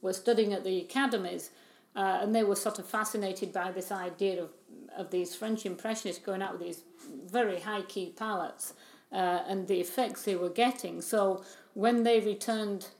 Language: English